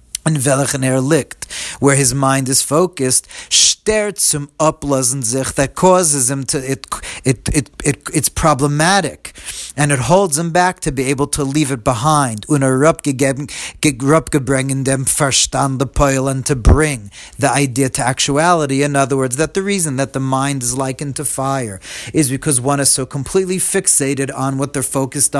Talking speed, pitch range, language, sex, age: 150 wpm, 135-150 Hz, English, male, 40-59